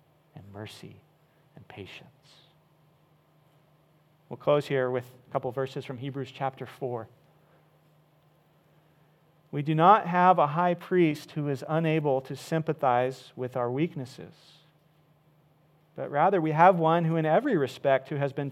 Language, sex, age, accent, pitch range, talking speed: English, male, 40-59, American, 135-160 Hz, 135 wpm